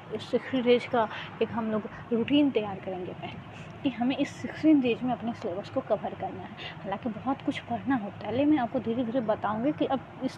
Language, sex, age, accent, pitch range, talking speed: Hindi, female, 20-39, native, 210-265 Hz, 215 wpm